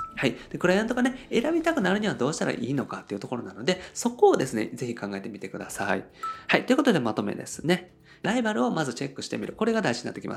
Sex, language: male, Japanese